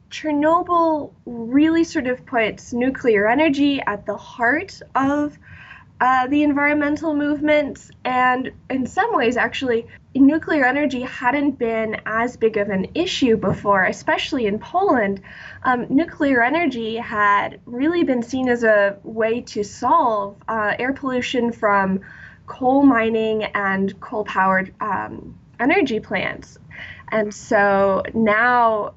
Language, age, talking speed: English, 10-29, 125 wpm